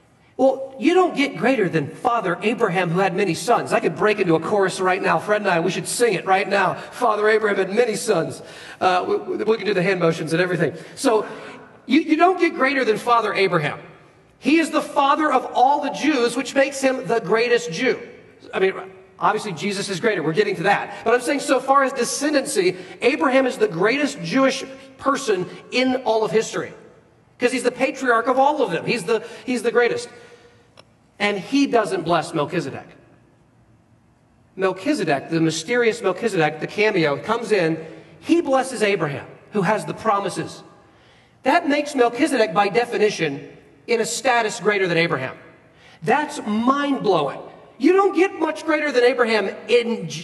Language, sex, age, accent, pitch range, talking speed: English, male, 40-59, American, 190-275 Hz, 175 wpm